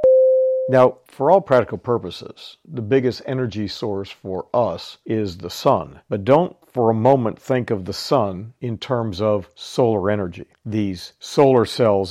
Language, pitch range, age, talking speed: English, 105-125 Hz, 50-69, 155 wpm